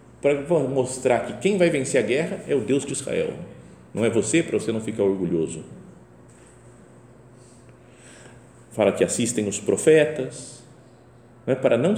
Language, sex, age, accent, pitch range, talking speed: Portuguese, male, 50-69, Brazilian, 105-130 Hz, 150 wpm